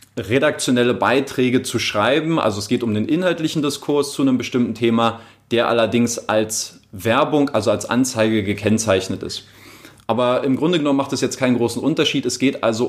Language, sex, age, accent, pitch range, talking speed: German, male, 30-49, German, 110-130 Hz, 170 wpm